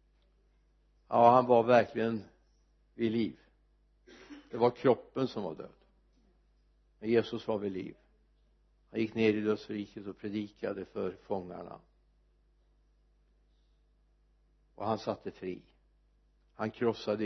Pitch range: 85-135 Hz